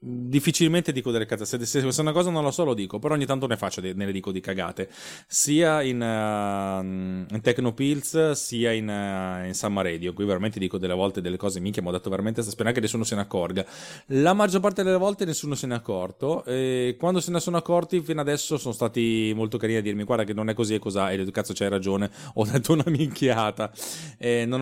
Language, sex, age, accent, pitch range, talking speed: Italian, male, 20-39, native, 95-130 Hz, 225 wpm